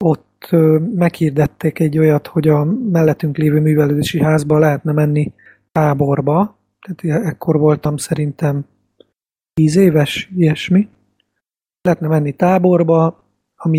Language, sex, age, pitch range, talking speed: Hungarian, male, 30-49, 150-170 Hz, 105 wpm